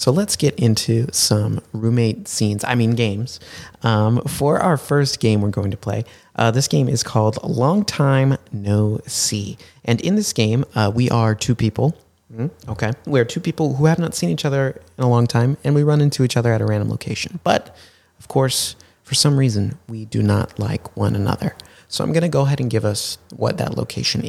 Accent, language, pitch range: American, English, 95-130 Hz